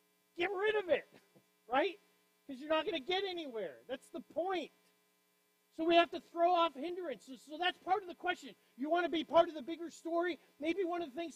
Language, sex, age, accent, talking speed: English, male, 40-59, American, 225 wpm